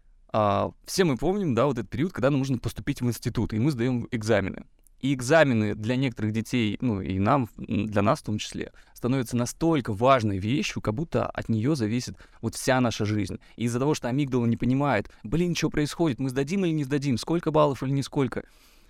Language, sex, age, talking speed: Russian, male, 20-39, 200 wpm